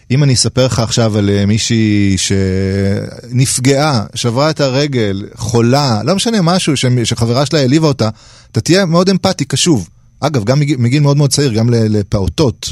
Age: 30-49